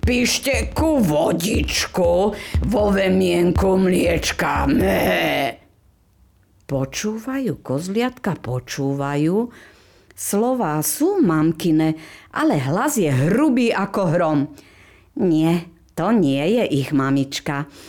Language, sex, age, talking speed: Slovak, female, 50-69, 85 wpm